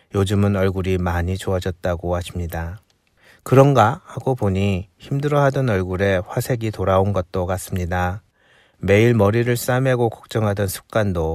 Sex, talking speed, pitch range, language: male, 100 wpm, 90-110 Hz, English